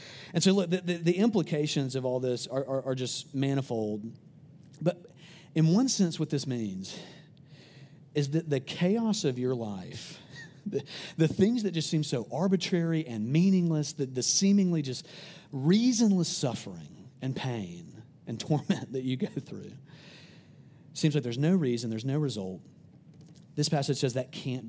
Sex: male